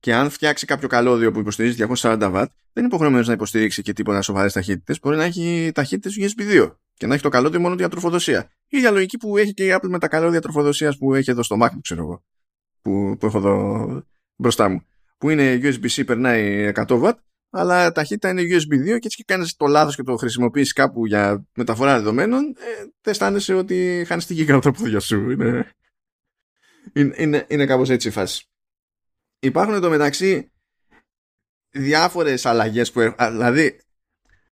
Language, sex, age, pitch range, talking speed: Greek, male, 20-39, 115-170 Hz, 170 wpm